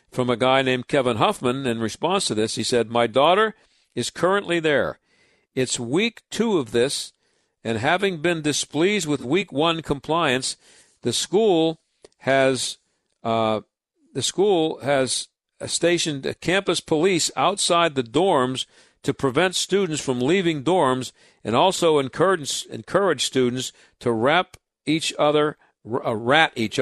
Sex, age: male, 60-79